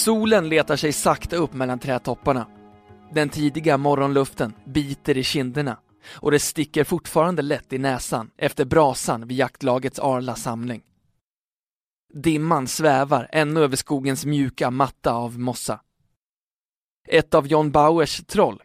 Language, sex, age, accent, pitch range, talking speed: Swedish, male, 20-39, native, 130-155 Hz, 130 wpm